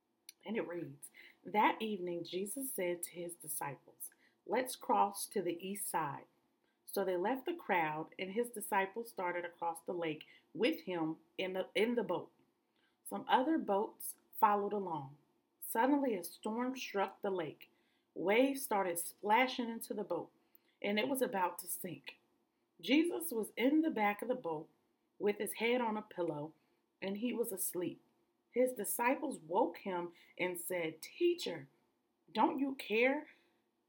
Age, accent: 40-59, American